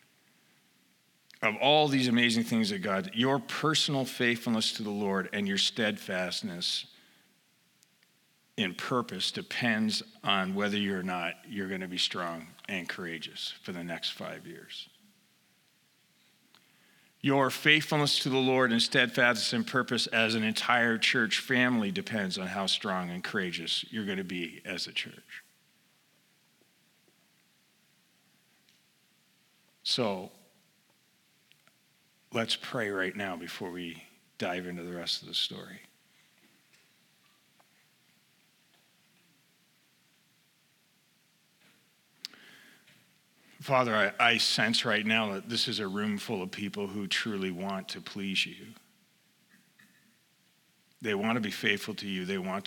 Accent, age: American, 40-59